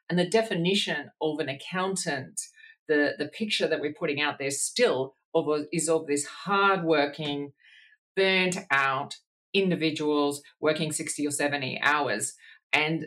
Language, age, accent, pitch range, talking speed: English, 40-59, Australian, 155-210 Hz, 140 wpm